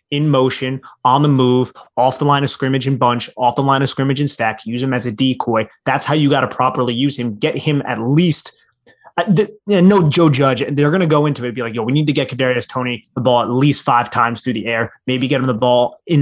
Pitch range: 120-145 Hz